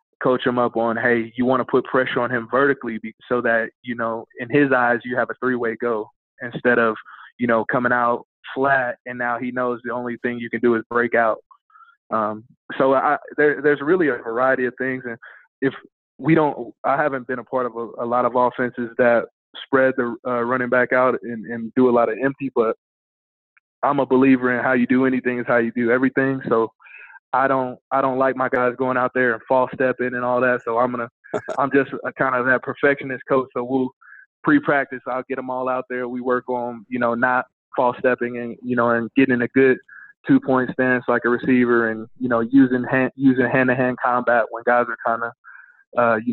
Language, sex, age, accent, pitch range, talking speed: English, male, 20-39, American, 120-130 Hz, 220 wpm